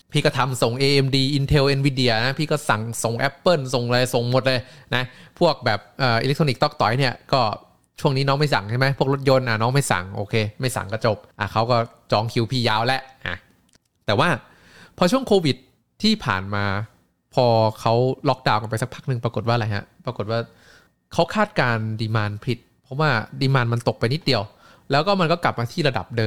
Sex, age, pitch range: male, 20-39, 115-150 Hz